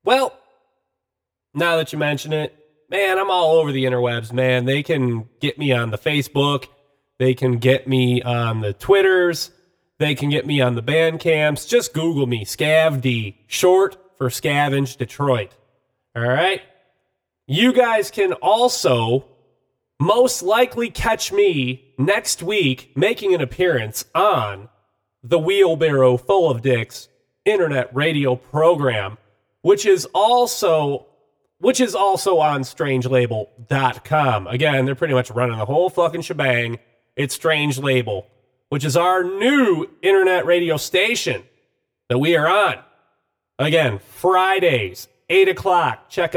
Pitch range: 125-180 Hz